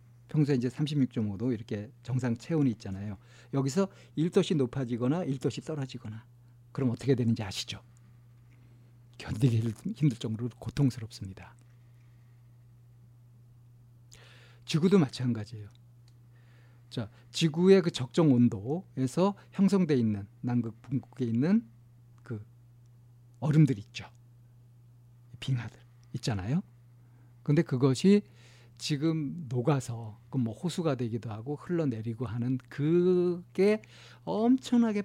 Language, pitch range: Korean, 120-145 Hz